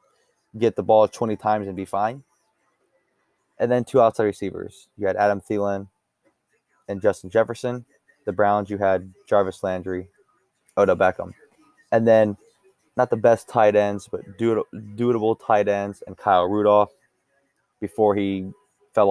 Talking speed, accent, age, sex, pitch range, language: 140 wpm, American, 20-39, male, 95-110 Hz, English